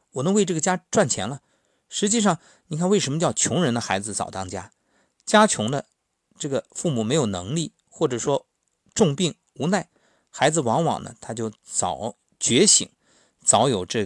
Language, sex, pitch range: Chinese, male, 100-165 Hz